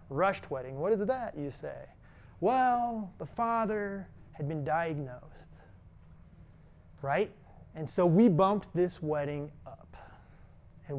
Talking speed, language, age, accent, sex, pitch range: 120 wpm, English, 30-49, American, male, 150-220 Hz